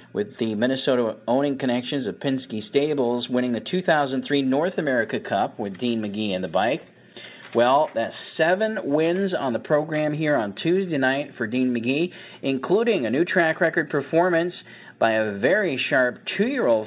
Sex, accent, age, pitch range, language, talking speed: male, American, 40-59, 120-150 Hz, English, 160 wpm